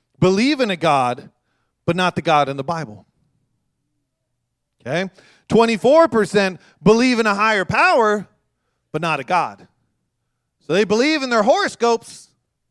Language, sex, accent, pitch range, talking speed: English, male, American, 130-195 Hz, 130 wpm